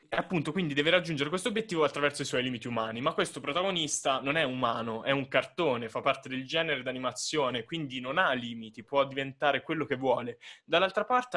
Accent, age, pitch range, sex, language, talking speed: native, 20-39, 125-155 Hz, male, Italian, 195 wpm